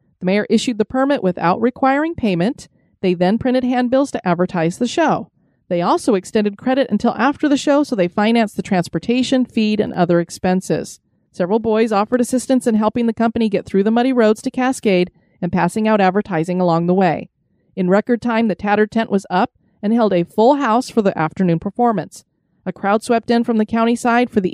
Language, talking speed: English, 200 wpm